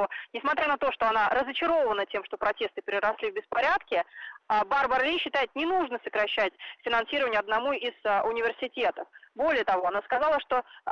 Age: 20-39